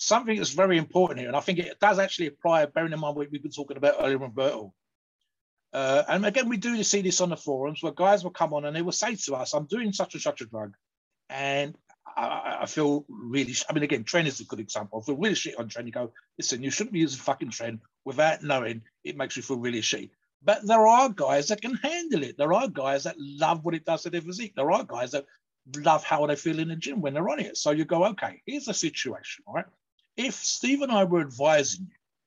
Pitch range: 135-180 Hz